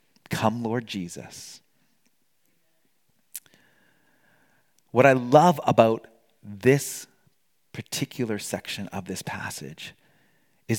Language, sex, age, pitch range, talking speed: English, male, 40-59, 115-160 Hz, 80 wpm